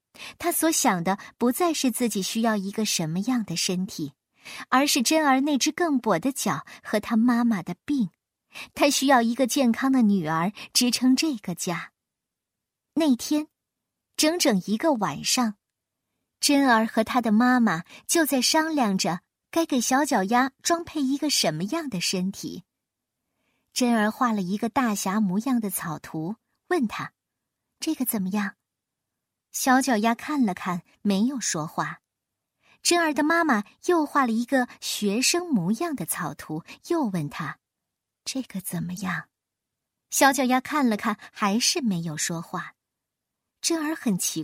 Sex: male